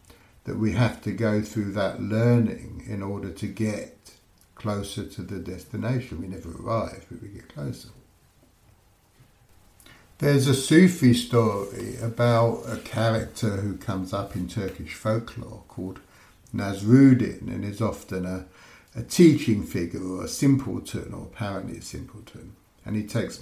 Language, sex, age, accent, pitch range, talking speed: English, male, 60-79, British, 95-120 Hz, 140 wpm